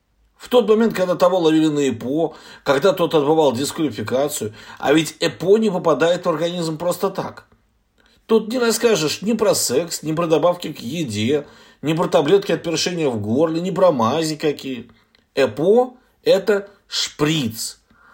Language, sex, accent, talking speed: Russian, male, native, 150 wpm